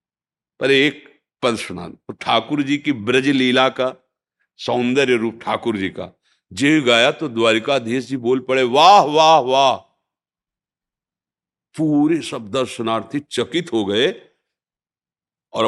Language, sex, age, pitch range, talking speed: Hindi, male, 50-69, 105-140 Hz, 120 wpm